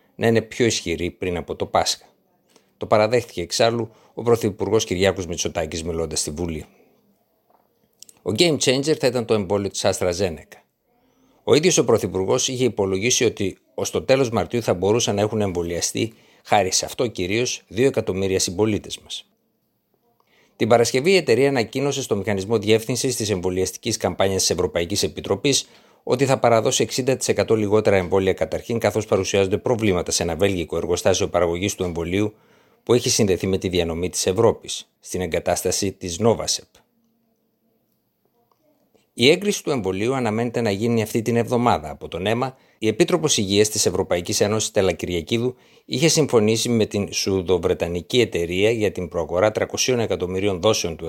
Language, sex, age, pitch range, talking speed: Greek, male, 60-79, 95-120 Hz, 145 wpm